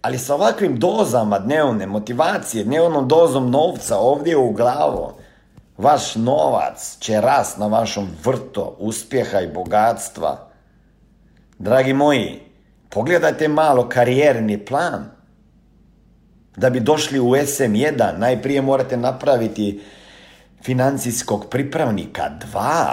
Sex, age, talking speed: male, 50-69, 100 wpm